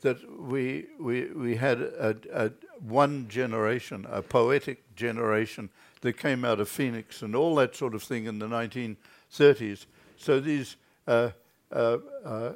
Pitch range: 115-160 Hz